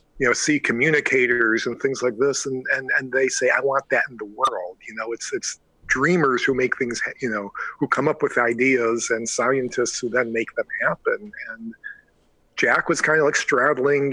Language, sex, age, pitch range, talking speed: English, male, 50-69, 120-165 Hz, 205 wpm